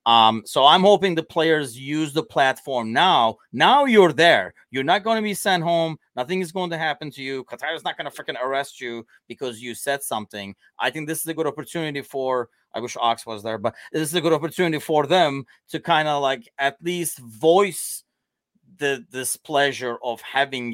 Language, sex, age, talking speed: English, male, 30-49, 210 wpm